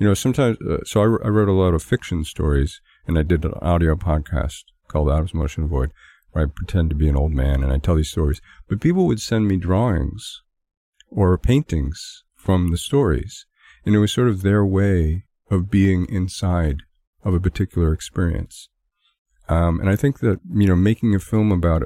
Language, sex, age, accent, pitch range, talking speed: English, male, 50-69, American, 80-105 Hz, 200 wpm